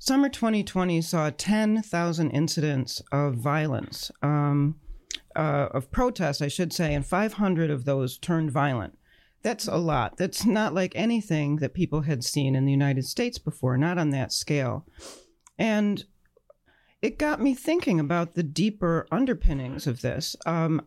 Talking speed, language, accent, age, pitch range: 150 wpm, English, American, 40-59, 145-200 Hz